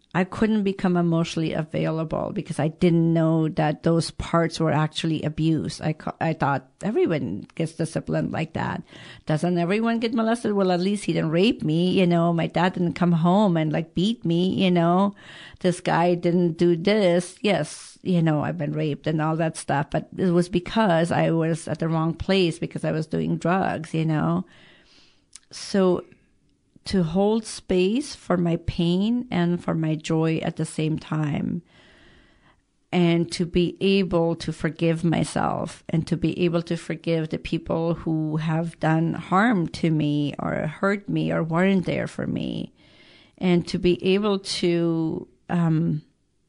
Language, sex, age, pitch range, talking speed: English, female, 50-69, 160-185 Hz, 165 wpm